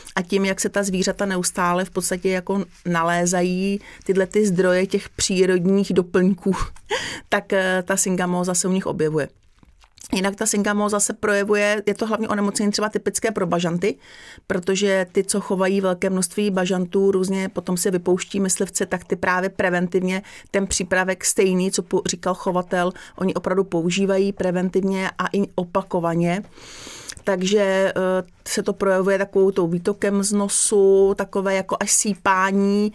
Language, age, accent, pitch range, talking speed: Czech, 40-59, native, 190-205 Hz, 140 wpm